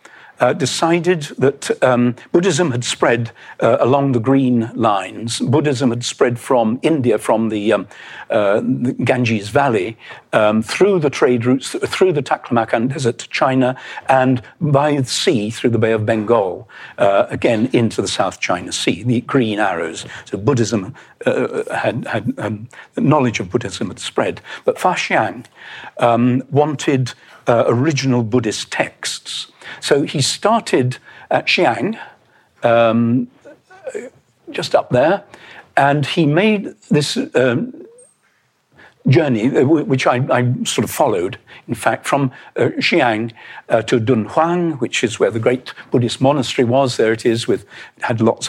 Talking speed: 145 wpm